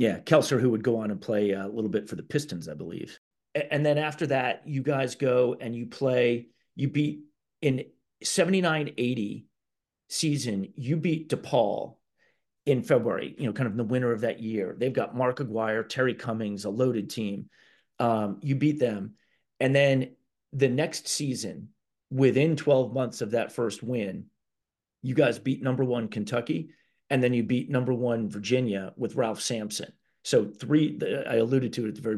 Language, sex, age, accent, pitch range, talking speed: English, male, 40-59, American, 110-140 Hz, 180 wpm